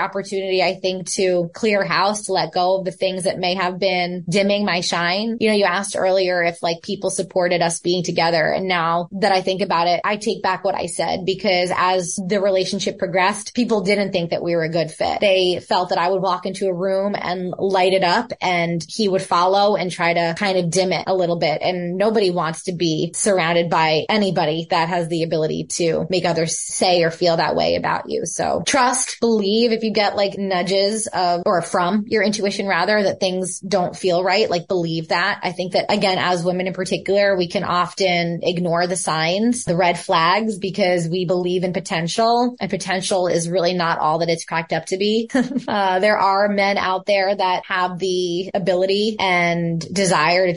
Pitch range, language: 175-200 Hz, English